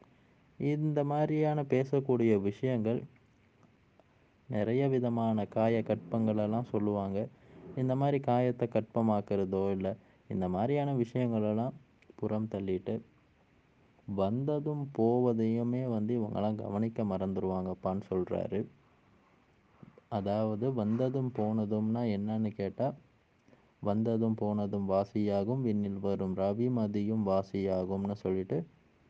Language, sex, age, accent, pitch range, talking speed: Tamil, male, 20-39, native, 100-125 Hz, 85 wpm